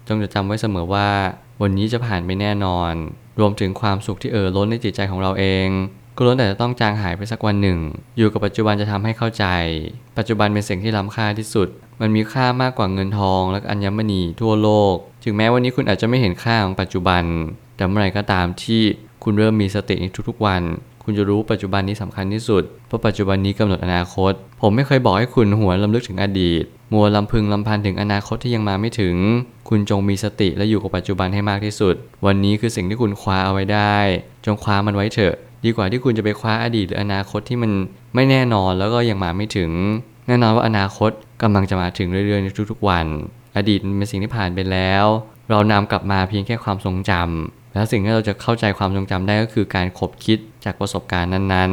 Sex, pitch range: male, 95-110 Hz